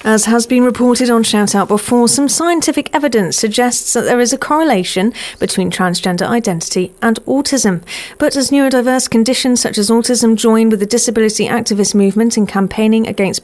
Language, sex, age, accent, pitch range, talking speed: English, female, 40-59, British, 200-250 Hz, 165 wpm